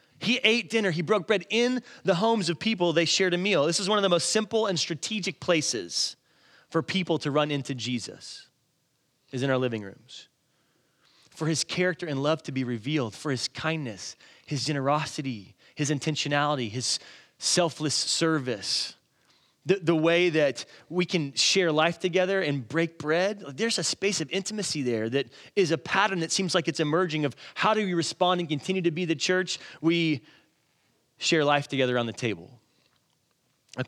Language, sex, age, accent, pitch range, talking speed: English, male, 30-49, American, 130-170 Hz, 175 wpm